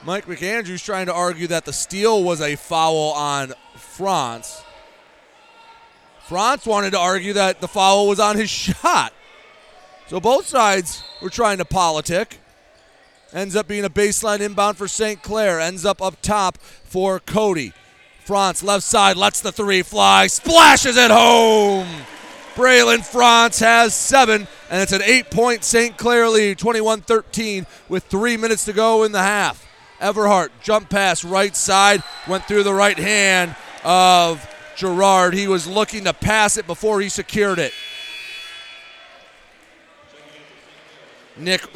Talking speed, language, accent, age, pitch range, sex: 140 wpm, English, American, 30-49, 170-215 Hz, male